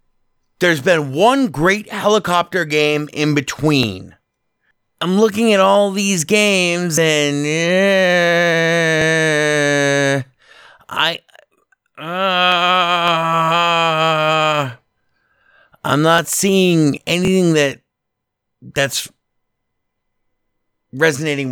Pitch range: 135-185 Hz